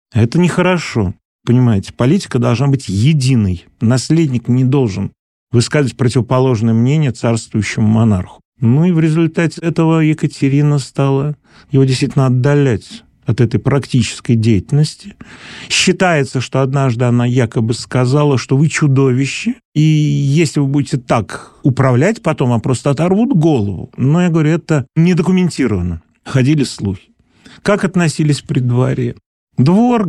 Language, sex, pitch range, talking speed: Russian, male, 120-155 Hz, 120 wpm